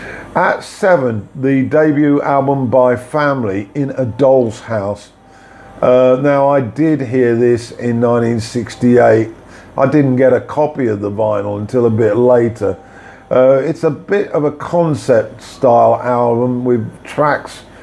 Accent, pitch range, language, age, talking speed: British, 115-135 Hz, English, 50-69, 140 wpm